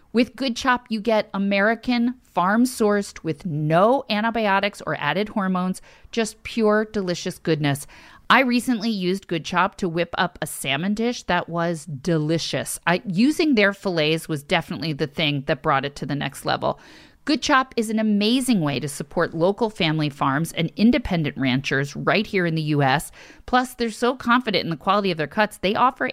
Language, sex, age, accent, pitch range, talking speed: English, female, 40-59, American, 165-230 Hz, 175 wpm